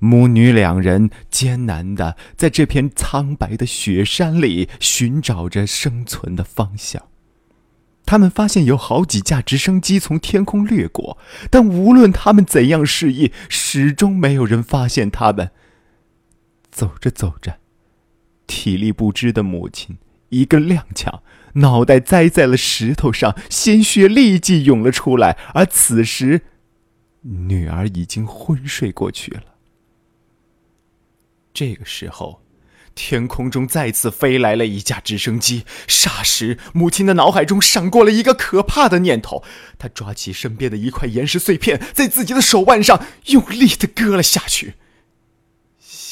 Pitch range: 110-175 Hz